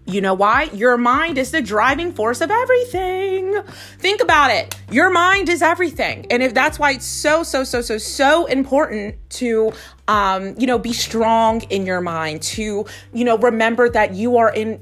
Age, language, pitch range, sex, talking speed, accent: 30-49, English, 200-280 Hz, female, 185 wpm, American